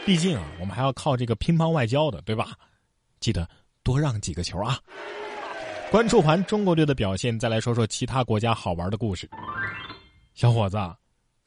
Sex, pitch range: male, 105-160 Hz